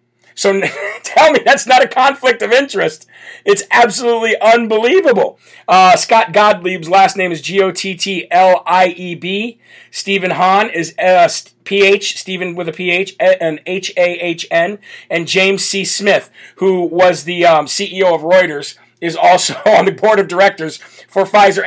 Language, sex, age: English, male, 40-59